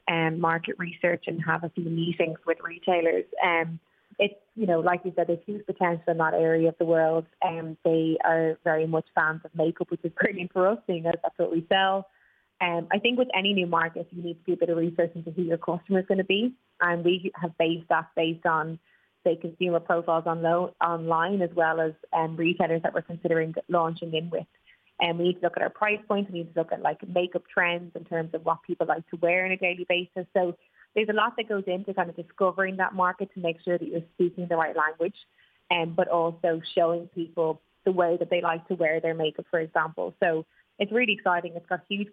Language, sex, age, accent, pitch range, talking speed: English, female, 20-39, Irish, 165-180 Hz, 235 wpm